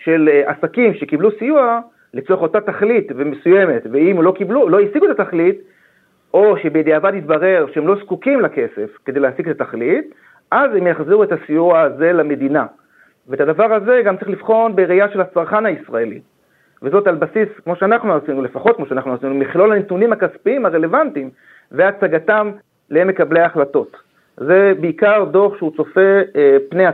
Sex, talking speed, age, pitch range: male, 145 wpm, 40-59, 155-215 Hz